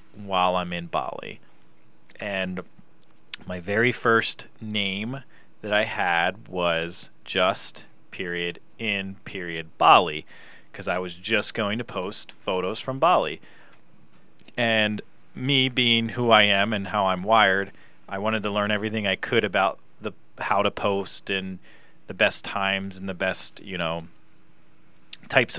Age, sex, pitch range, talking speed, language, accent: 30-49, male, 95-115 Hz, 140 wpm, English, American